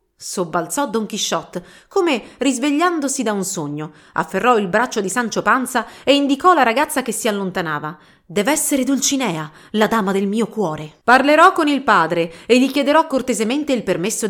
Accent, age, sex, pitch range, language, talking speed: native, 30-49, female, 180-270 Hz, Italian, 165 wpm